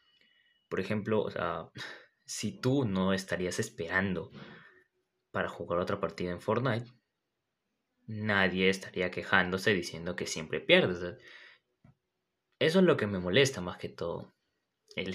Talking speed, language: 120 wpm, Spanish